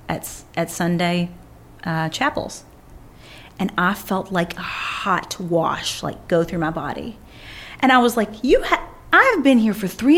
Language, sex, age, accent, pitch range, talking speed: English, female, 40-59, American, 175-285 Hz, 165 wpm